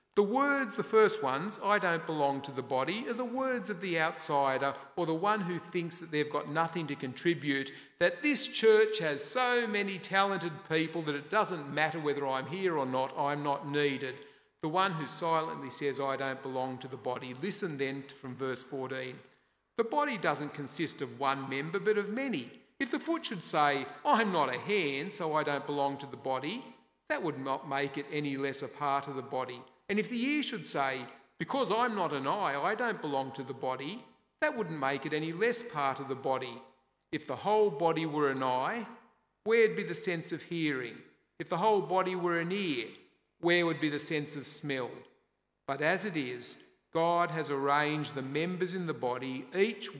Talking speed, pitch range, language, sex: 205 wpm, 135-190 Hz, English, male